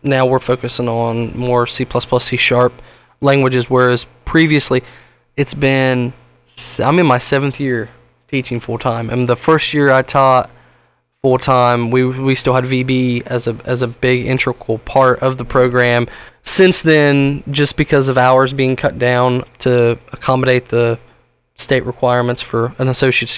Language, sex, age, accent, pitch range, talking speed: English, male, 10-29, American, 120-135 Hz, 160 wpm